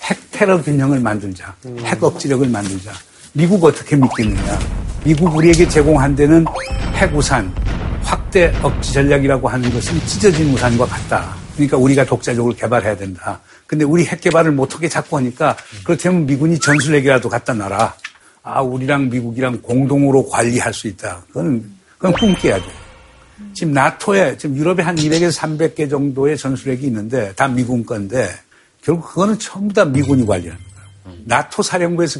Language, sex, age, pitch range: Korean, male, 60-79, 115-165 Hz